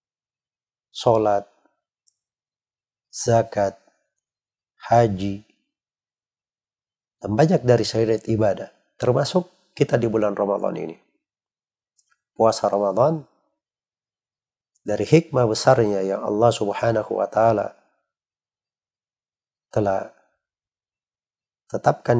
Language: Indonesian